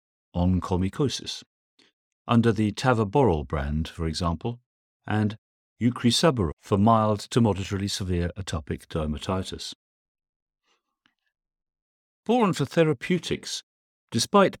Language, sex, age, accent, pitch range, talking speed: English, male, 50-69, British, 85-115 Hz, 80 wpm